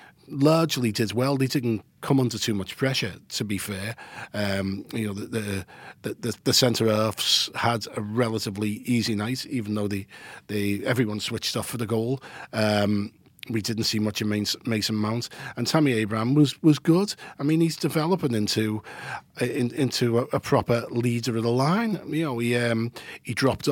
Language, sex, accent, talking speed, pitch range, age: English, male, British, 175 wpm, 110-140 Hz, 40-59